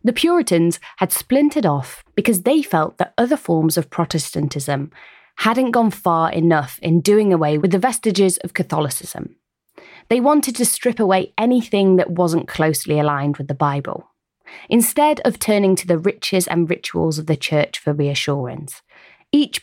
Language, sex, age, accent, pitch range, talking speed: English, female, 20-39, British, 155-225 Hz, 160 wpm